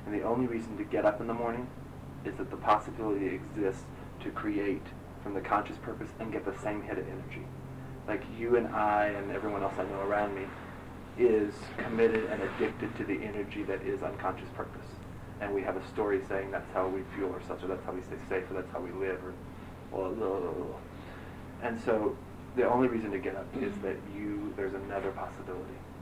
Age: 30-49